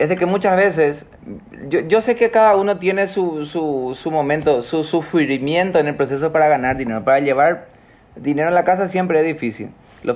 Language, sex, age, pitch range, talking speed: Spanish, male, 30-49, 145-175 Hz, 200 wpm